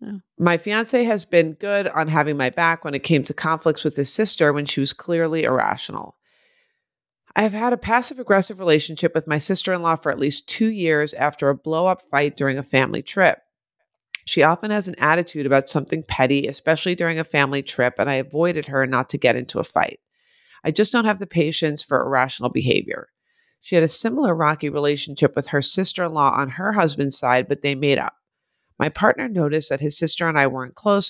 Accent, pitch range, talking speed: American, 140-185 Hz, 200 wpm